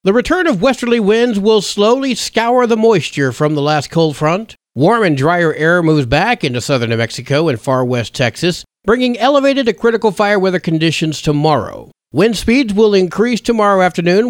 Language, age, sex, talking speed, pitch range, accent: English, 50-69, male, 180 wpm, 145-210 Hz, American